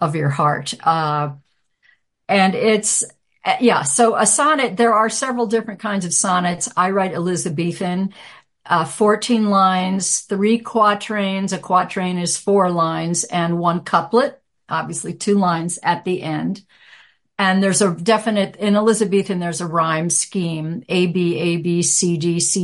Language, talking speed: English, 150 wpm